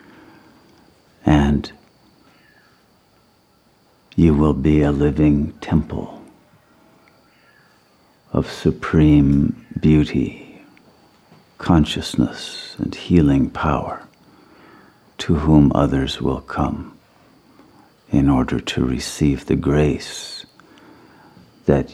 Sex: male